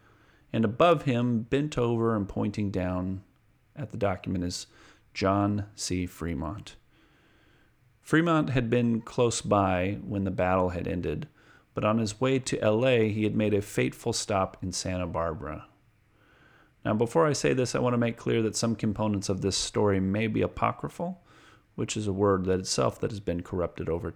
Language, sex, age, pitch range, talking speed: English, male, 40-59, 95-120 Hz, 175 wpm